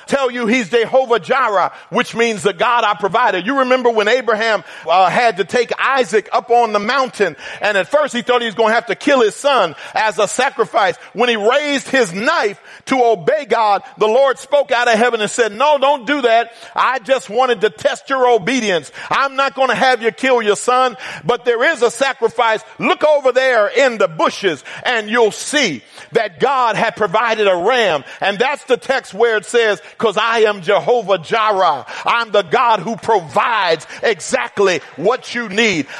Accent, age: American, 50-69